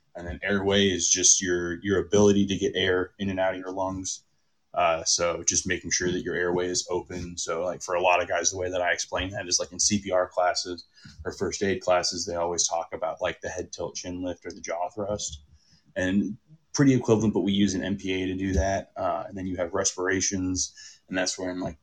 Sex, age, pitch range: male, 20-39, 85-95 Hz